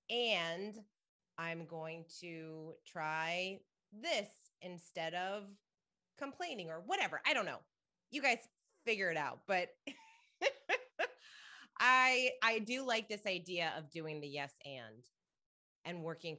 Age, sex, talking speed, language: 30-49, female, 120 wpm, English